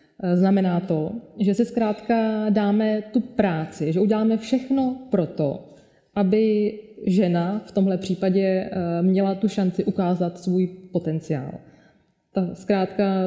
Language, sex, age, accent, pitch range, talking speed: Czech, female, 20-39, native, 175-215 Hz, 115 wpm